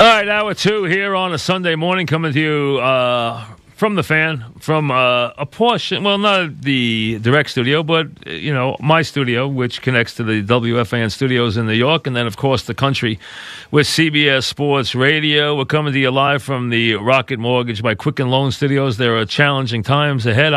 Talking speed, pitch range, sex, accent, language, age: 195 wpm, 115-145 Hz, male, American, English, 40-59